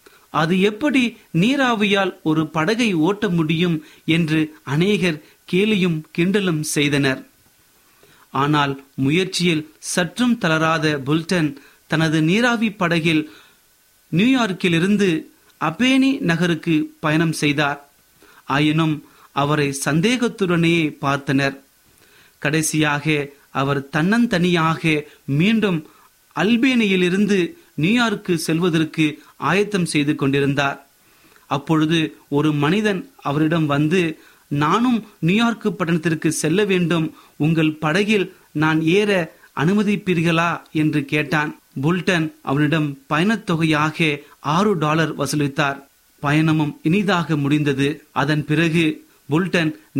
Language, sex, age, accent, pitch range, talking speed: Tamil, male, 30-49, native, 150-185 Hz, 60 wpm